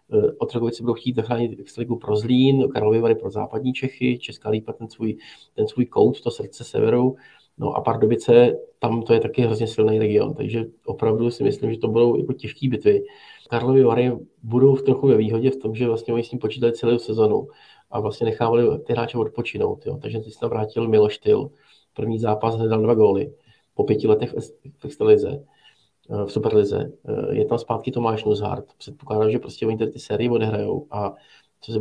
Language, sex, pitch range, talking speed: Czech, male, 110-135 Hz, 190 wpm